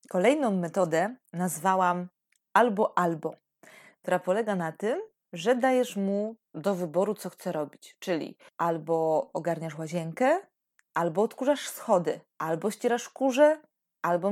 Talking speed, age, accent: 115 wpm, 20-39, native